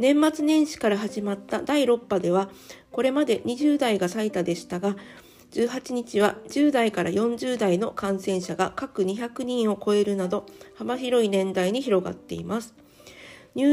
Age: 50-69